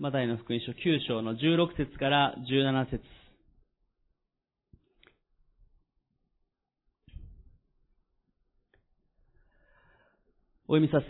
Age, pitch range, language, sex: 30-49, 120-150 Hz, Japanese, male